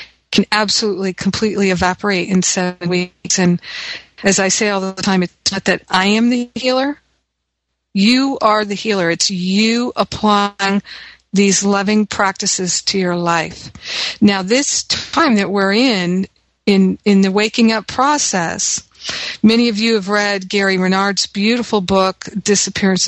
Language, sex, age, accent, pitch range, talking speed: English, female, 50-69, American, 190-220 Hz, 145 wpm